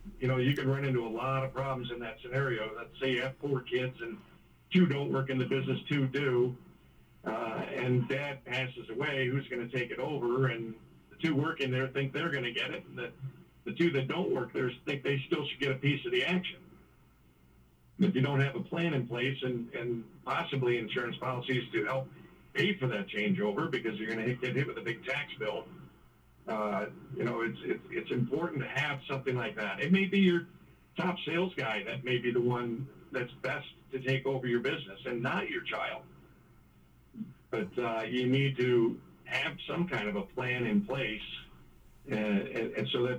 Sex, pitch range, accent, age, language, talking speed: male, 120-140 Hz, American, 50-69, English, 205 wpm